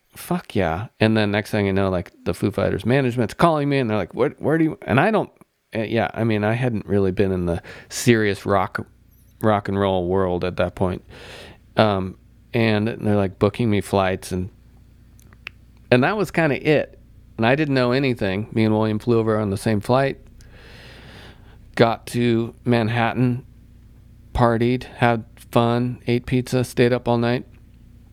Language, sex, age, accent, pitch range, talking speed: English, male, 40-59, American, 100-120 Hz, 180 wpm